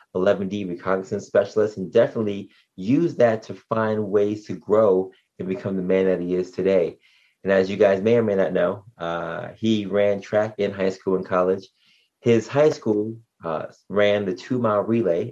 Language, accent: English, American